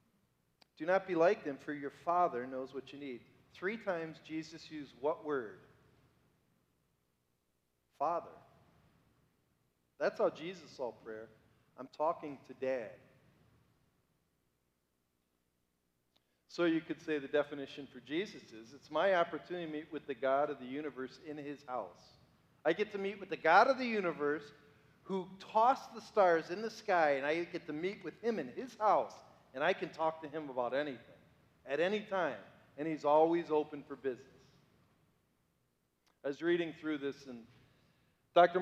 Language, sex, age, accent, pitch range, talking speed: English, male, 40-59, American, 130-170 Hz, 160 wpm